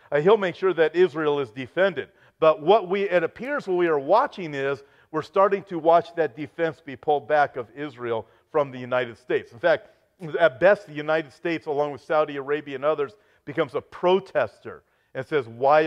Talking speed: 195 wpm